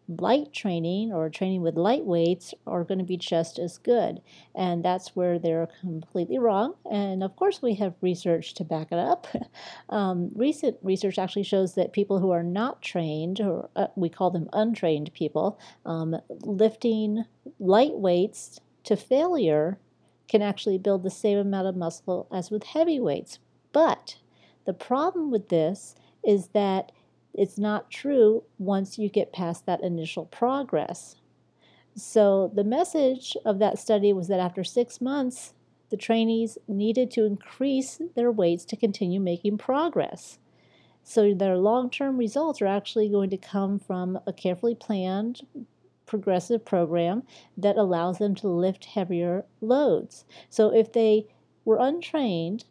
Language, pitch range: English, 180-230 Hz